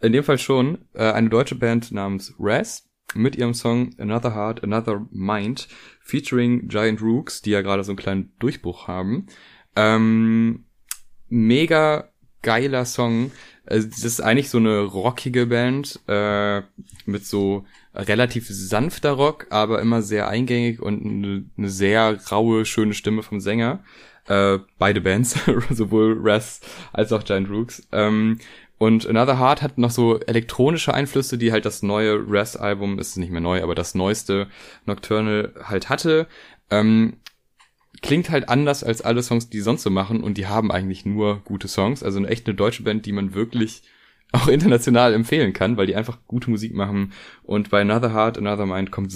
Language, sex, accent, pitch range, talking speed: German, male, German, 105-120 Hz, 160 wpm